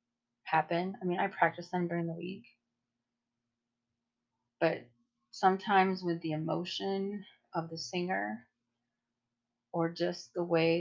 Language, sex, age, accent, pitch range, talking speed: English, female, 30-49, American, 120-175 Hz, 115 wpm